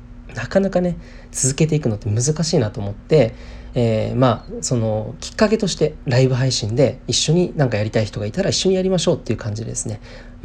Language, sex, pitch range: Japanese, male, 115-145 Hz